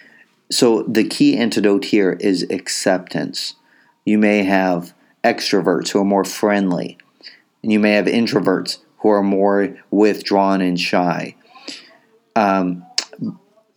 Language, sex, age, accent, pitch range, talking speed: English, male, 40-59, American, 90-110 Hz, 120 wpm